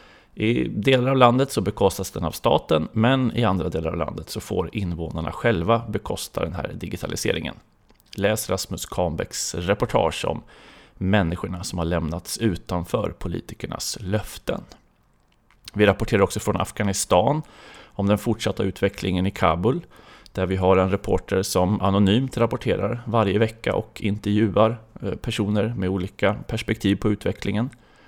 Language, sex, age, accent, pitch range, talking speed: Swedish, male, 30-49, native, 90-110 Hz, 135 wpm